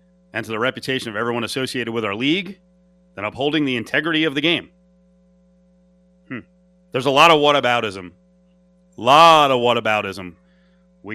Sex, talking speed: male, 150 wpm